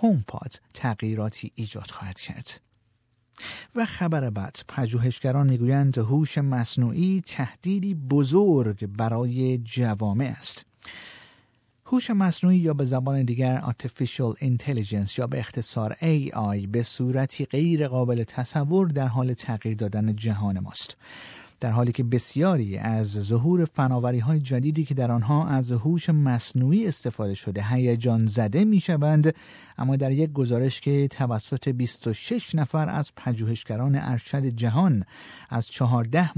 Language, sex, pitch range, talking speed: Persian, male, 115-150 Hz, 125 wpm